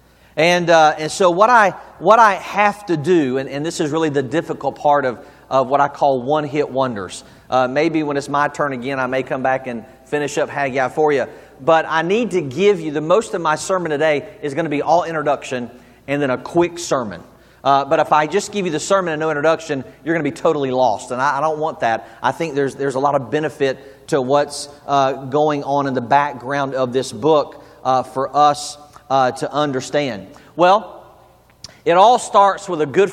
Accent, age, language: American, 40-59, English